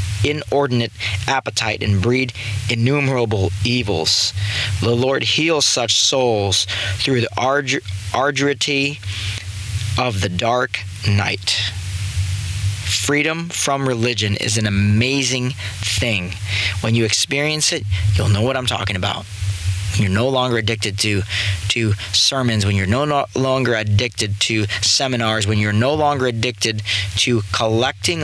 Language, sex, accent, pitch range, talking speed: English, male, American, 100-120 Hz, 120 wpm